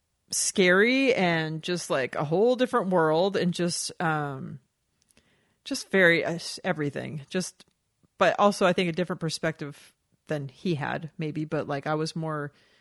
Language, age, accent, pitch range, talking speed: English, 30-49, American, 160-220 Hz, 150 wpm